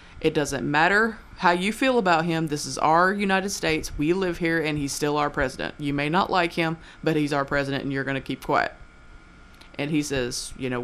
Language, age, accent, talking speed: English, 30-49, American, 225 wpm